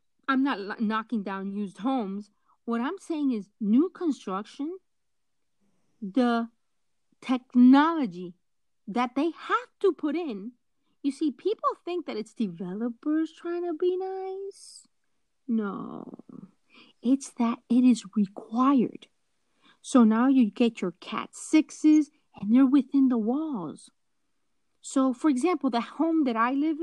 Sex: female